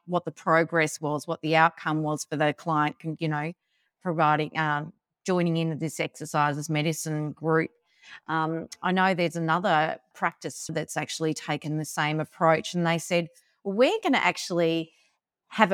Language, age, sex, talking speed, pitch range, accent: English, 30-49, female, 165 wpm, 160-210 Hz, Australian